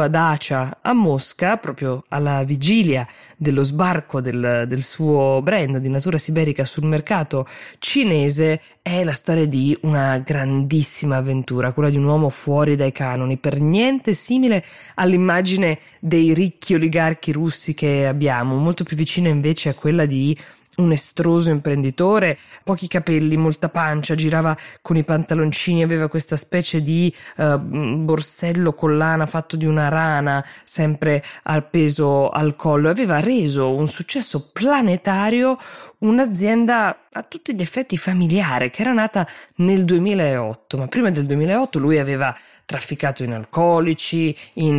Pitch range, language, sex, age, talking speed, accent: 140-175 Hz, Italian, female, 20-39, 140 wpm, native